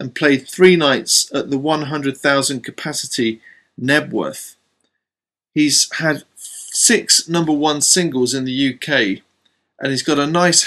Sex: male